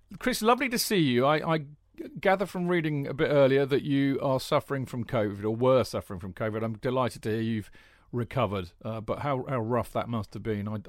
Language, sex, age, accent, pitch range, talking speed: English, male, 40-59, British, 115-145 Hz, 220 wpm